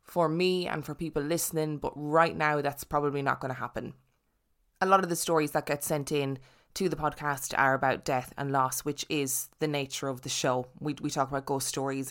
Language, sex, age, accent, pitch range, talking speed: English, female, 20-39, Irish, 135-155 Hz, 225 wpm